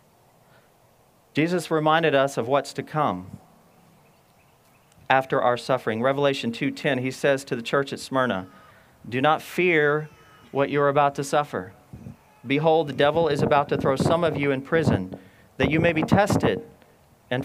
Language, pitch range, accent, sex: English, 135-165 Hz, American, male